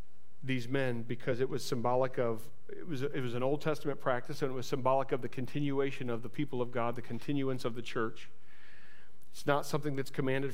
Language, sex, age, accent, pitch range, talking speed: English, male, 40-59, American, 130-160 Hz, 210 wpm